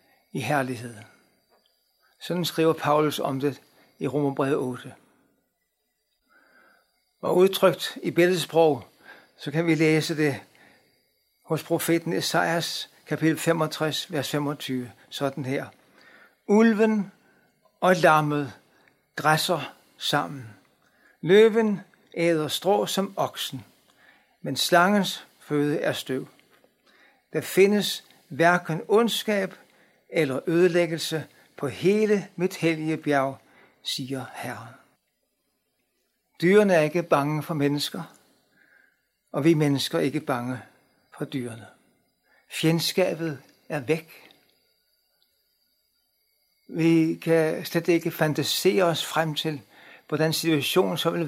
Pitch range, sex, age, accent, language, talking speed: 145-175 Hz, male, 60-79, native, Danish, 100 wpm